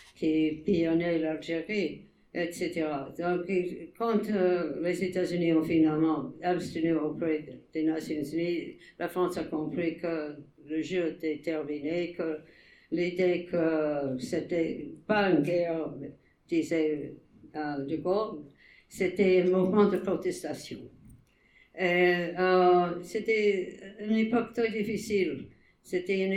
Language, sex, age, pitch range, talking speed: English, female, 60-79, 160-185 Hz, 110 wpm